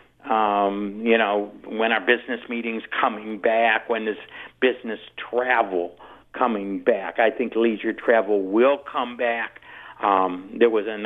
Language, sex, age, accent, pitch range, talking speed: English, male, 50-69, American, 110-130 Hz, 140 wpm